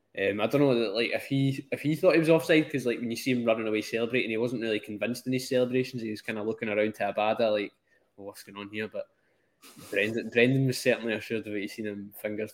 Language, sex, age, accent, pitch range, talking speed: English, male, 10-29, British, 105-125 Hz, 270 wpm